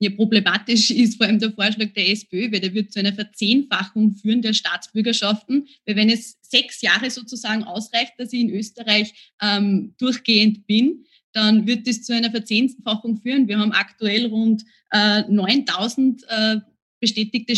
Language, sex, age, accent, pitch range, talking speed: German, female, 20-39, Austrian, 210-245 Hz, 165 wpm